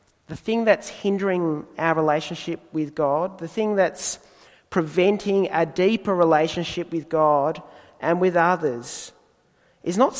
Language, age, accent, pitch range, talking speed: English, 40-59, Australian, 170-215 Hz, 130 wpm